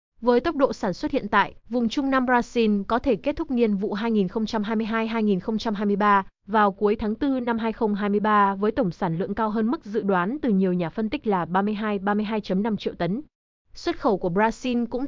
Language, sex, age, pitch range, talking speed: Vietnamese, female, 20-39, 200-245 Hz, 185 wpm